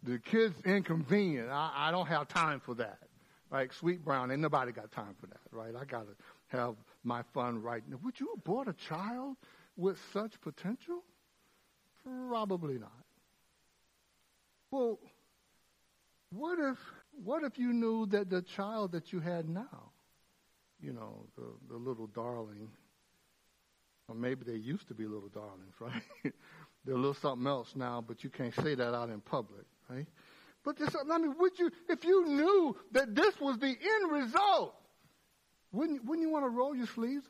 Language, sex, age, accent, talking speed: English, male, 60-79, American, 160 wpm